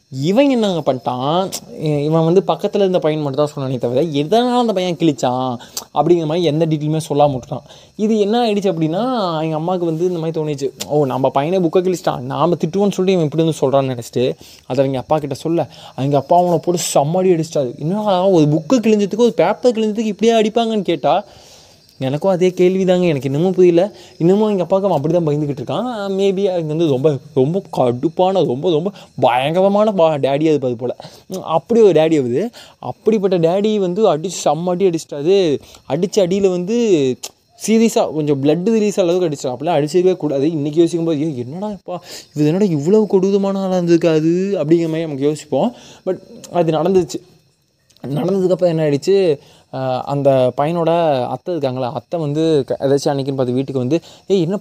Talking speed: 165 wpm